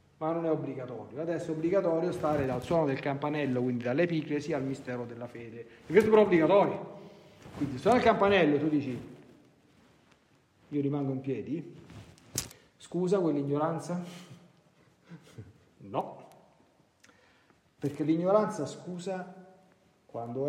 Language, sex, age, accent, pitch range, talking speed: Italian, male, 40-59, native, 135-185 Hz, 115 wpm